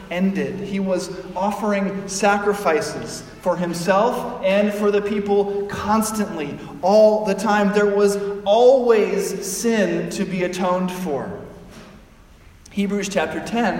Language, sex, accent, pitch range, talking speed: English, male, American, 180-215 Hz, 115 wpm